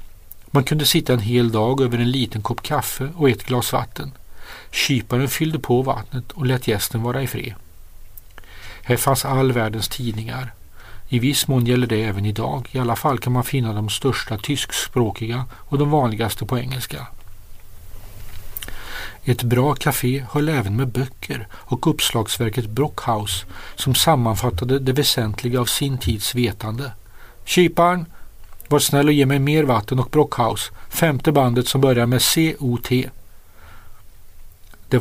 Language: Swedish